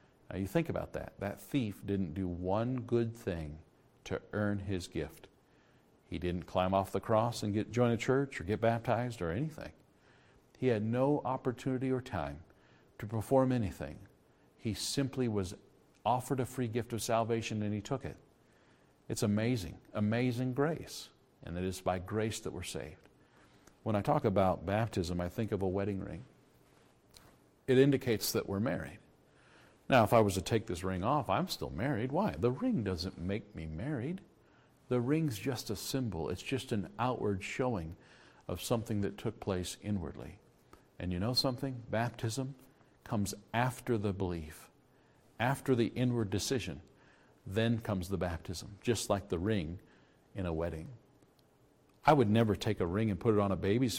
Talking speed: 170 wpm